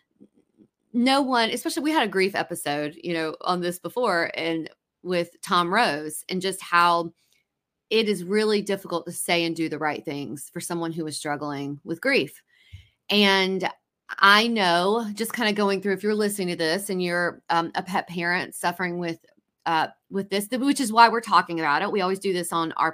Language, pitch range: English, 175-220 Hz